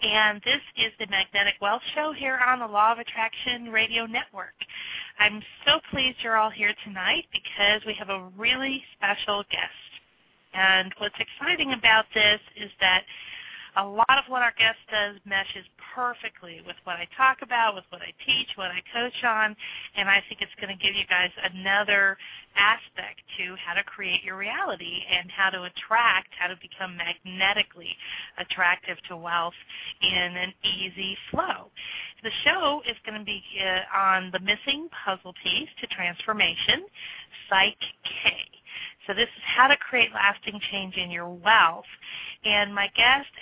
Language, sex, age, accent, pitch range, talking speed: English, female, 40-59, American, 190-225 Hz, 165 wpm